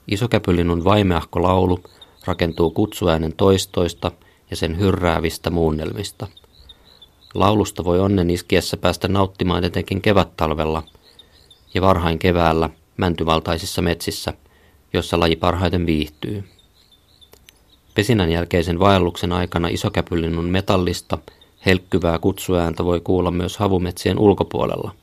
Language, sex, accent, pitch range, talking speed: Finnish, male, native, 80-95 Hz, 95 wpm